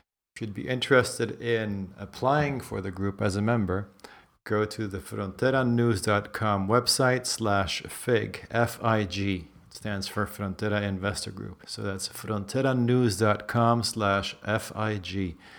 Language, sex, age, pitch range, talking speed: English, male, 40-59, 95-115 Hz, 120 wpm